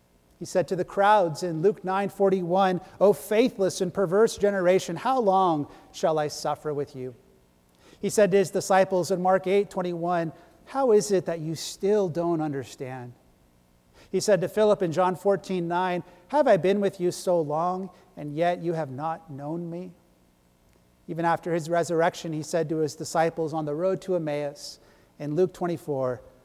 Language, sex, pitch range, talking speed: English, male, 145-195 Hz, 175 wpm